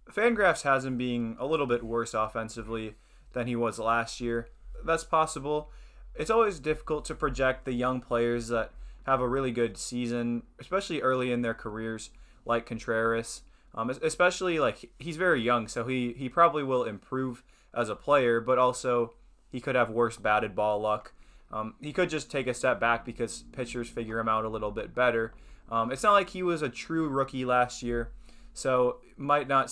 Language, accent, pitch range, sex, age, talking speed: English, American, 110-130 Hz, male, 20-39, 185 wpm